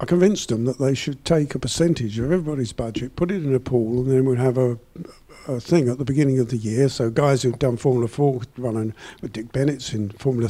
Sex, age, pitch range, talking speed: male, 50-69, 120-150 Hz, 250 wpm